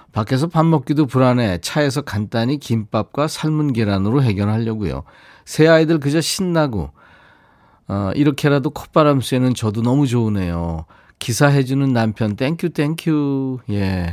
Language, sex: Korean, male